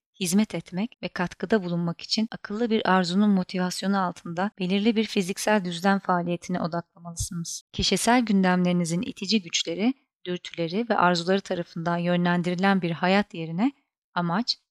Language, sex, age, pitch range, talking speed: Turkish, female, 30-49, 175-210 Hz, 120 wpm